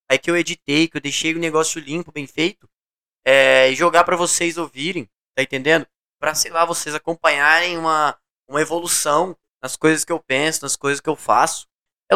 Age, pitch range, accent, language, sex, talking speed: 10-29, 140-170 Hz, Brazilian, Portuguese, male, 190 wpm